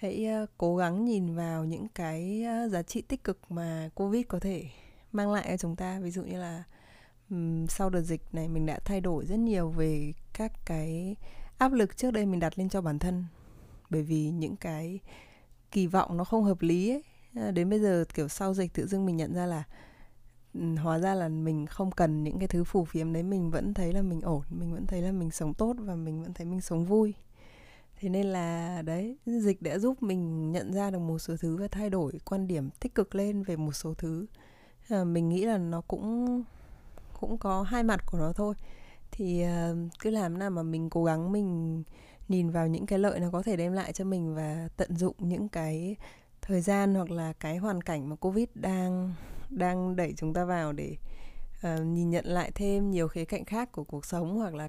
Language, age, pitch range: Vietnamese, 20-39, 165-195 Hz